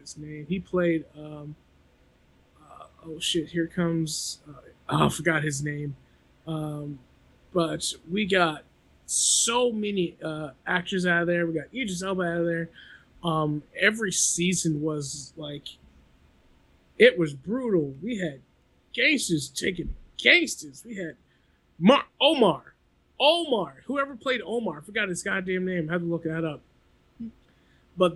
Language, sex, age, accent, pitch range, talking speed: English, male, 20-39, American, 150-195 Hz, 140 wpm